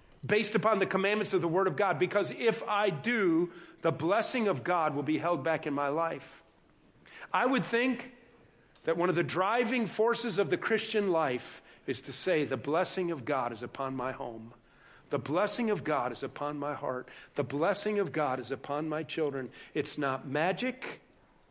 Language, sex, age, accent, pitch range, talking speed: English, male, 50-69, American, 140-185 Hz, 185 wpm